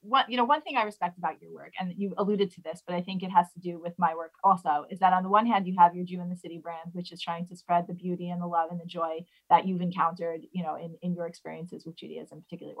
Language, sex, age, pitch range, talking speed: English, female, 30-49, 175-190 Hz, 305 wpm